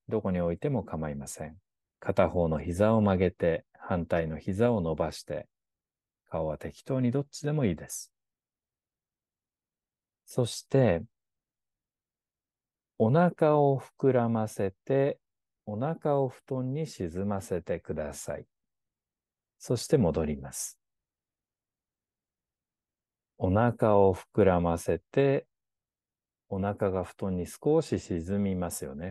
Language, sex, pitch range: Japanese, male, 85-125 Hz